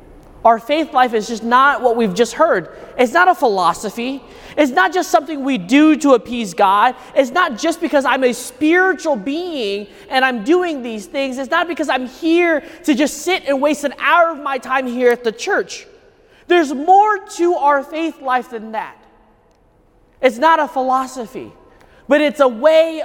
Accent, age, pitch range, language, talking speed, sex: American, 20-39, 270-370 Hz, English, 185 wpm, male